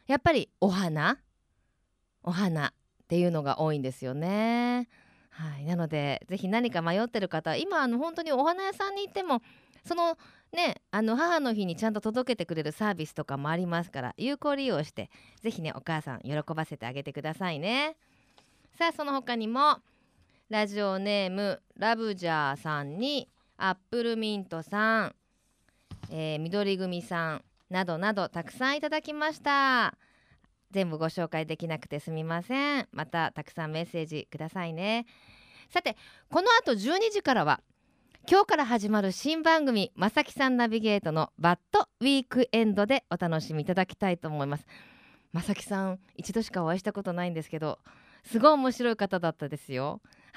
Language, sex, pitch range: Japanese, female, 160-245 Hz